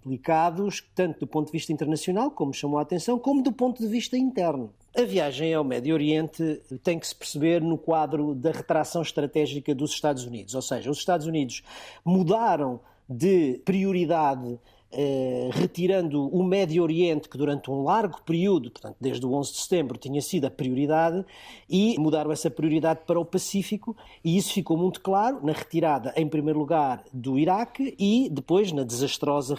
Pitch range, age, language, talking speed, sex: 150-200 Hz, 40-59, Portuguese, 170 wpm, male